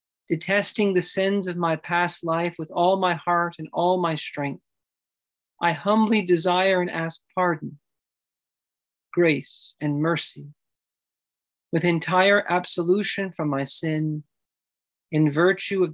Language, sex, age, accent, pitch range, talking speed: English, male, 40-59, American, 145-180 Hz, 125 wpm